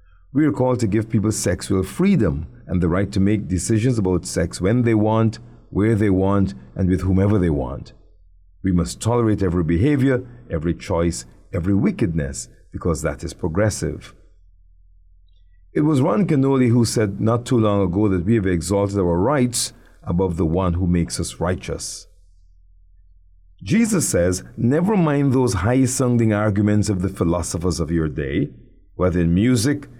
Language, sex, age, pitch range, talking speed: English, male, 50-69, 85-120 Hz, 160 wpm